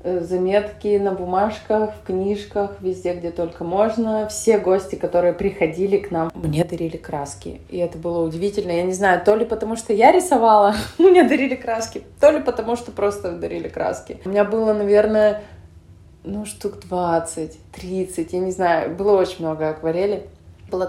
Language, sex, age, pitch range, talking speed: Russian, female, 20-39, 175-215 Hz, 160 wpm